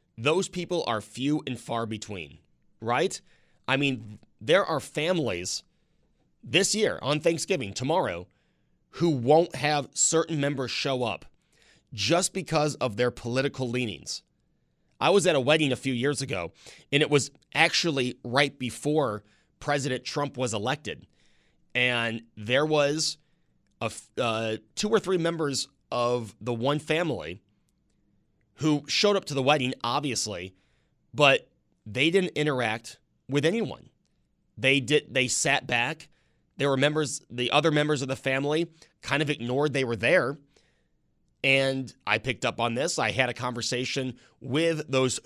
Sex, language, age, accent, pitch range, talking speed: male, English, 30-49, American, 115-150 Hz, 140 wpm